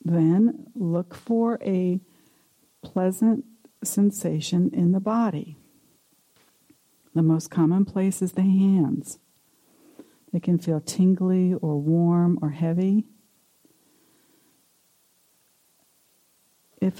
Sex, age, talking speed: female, 60-79, 90 wpm